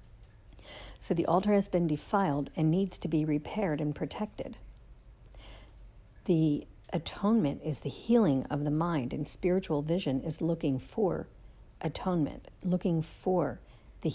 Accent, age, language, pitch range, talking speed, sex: American, 50-69, English, 115-175 Hz, 130 wpm, female